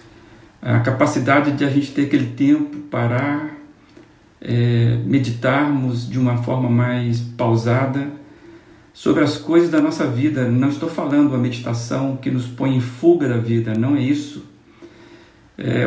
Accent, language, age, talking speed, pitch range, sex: Brazilian, Portuguese, 50-69, 145 wpm, 125-165 Hz, male